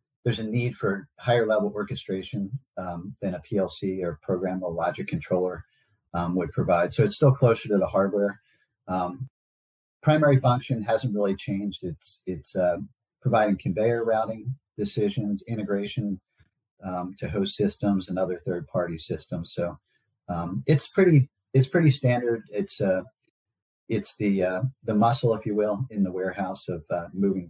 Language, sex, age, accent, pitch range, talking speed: English, male, 40-59, American, 95-125 Hz, 155 wpm